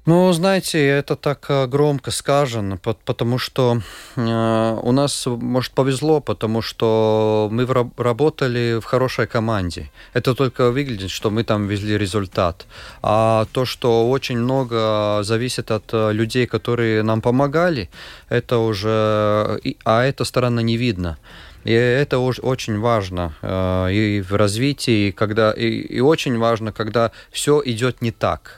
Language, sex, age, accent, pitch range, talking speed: Russian, male, 30-49, native, 110-130 Hz, 130 wpm